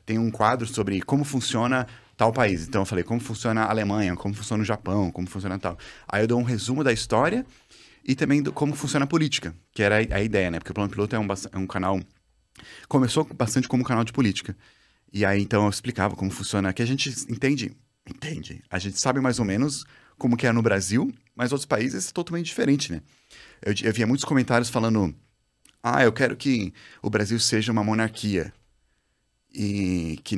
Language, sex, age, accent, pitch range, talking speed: Portuguese, male, 30-49, Brazilian, 100-130 Hz, 205 wpm